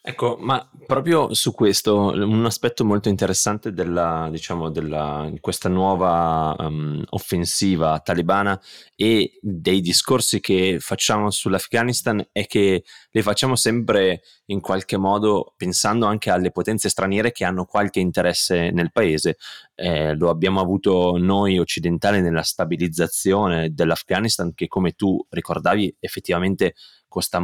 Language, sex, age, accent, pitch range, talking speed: Italian, male, 20-39, native, 90-105 Hz, 125 wpm